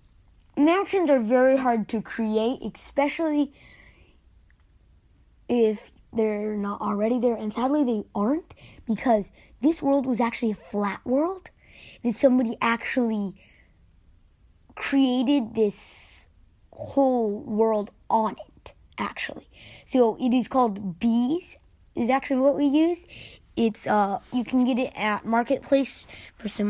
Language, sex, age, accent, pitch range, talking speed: English, female, 20-39, American, 205-260 Hz, 120 wpm